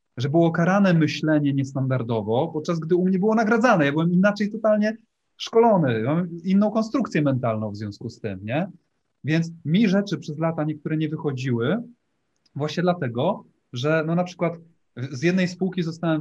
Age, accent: 30-49, native